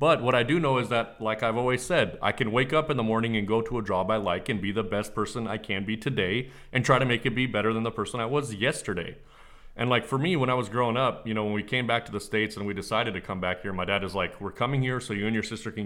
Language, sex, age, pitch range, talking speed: English, male, 30-49, 105-125 Hz, 320 wpm